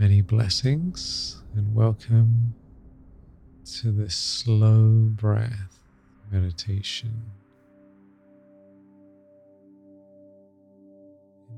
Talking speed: 50 wpm